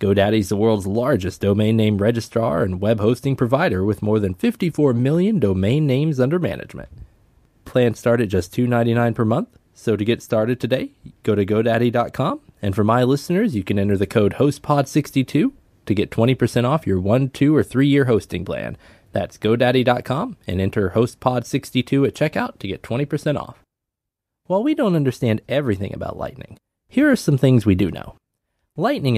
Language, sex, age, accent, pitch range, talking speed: English, male, 20-39, American, 100-135 Hz, 170 wpm